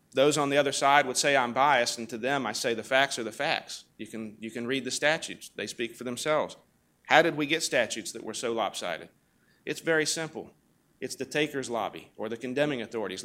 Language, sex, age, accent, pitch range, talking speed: English, male, 40-59, American, 120-160 Hz, 225 wpm